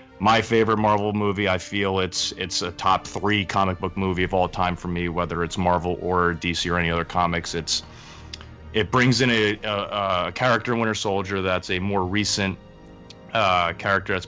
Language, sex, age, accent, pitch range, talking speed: English, male, 30-49, American, 90-100 Hz, 190 wpm